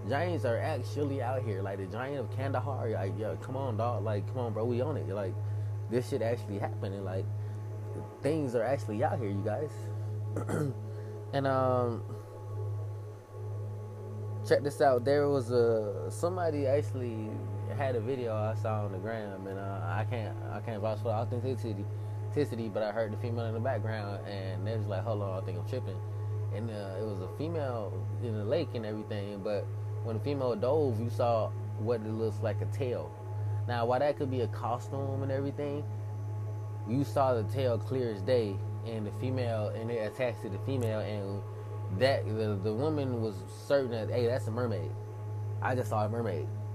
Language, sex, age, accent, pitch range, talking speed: English, male, 20-39, American, 105-115 Hz, 185 wpm